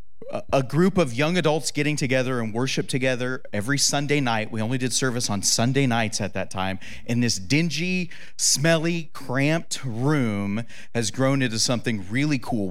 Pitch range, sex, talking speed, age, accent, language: 110-145 Hz, male, 165 wpm, 30-49, American, English